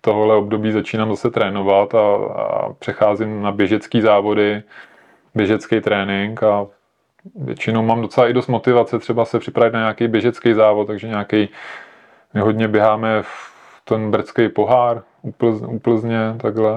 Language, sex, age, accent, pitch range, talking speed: Czech, male, 20-39, native, 110-120 Hz, 135 wpm